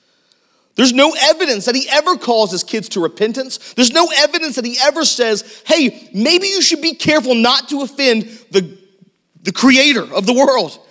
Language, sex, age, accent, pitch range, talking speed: English, male, 40-59, American, 175-270 Hz, 180 wpm